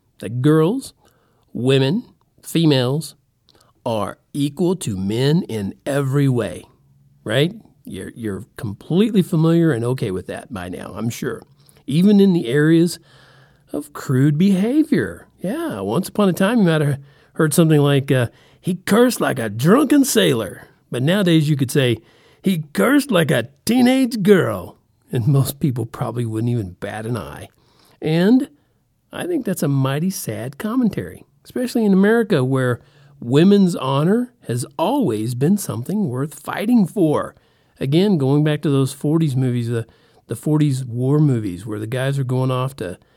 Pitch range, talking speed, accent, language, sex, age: 125-170 Hz, 150 wpm, American, English, male, 50-69